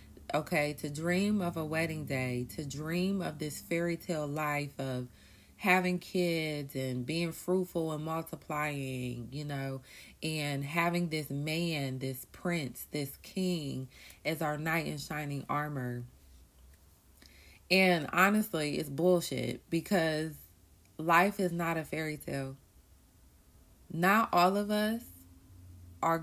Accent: American